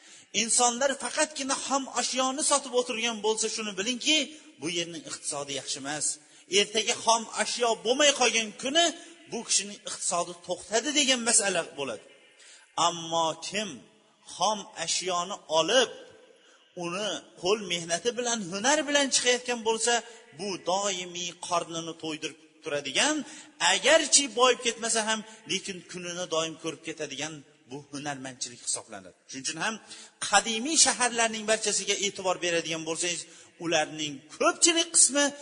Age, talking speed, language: 30-49, 115 wpm, Bulgarian